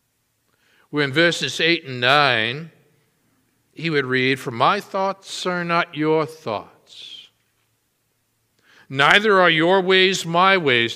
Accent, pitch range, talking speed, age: American, 125-175 Hz, 115 wpm, 60-79